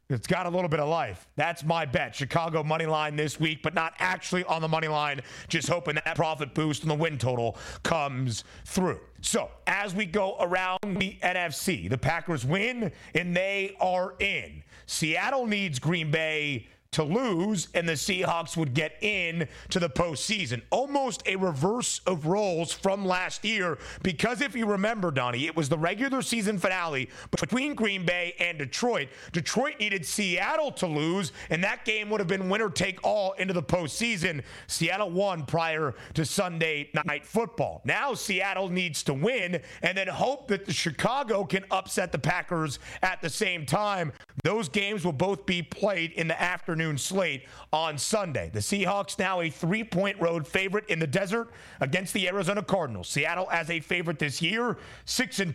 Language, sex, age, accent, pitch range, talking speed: English, male, 30-49, American, 155-195 Hz, 175 wpm